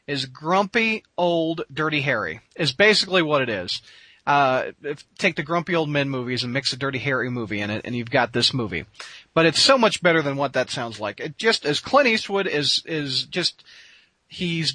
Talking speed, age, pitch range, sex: 210 wpm, 30-49, 130-175 Hz, male